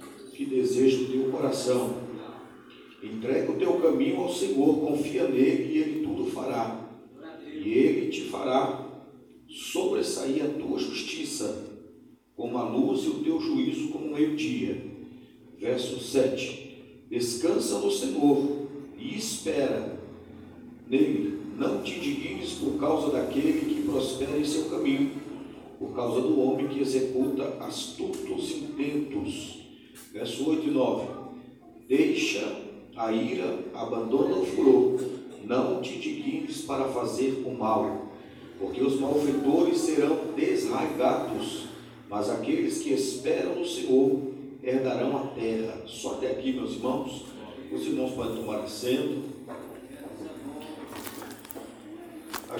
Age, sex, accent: 50-69, male, Brazilian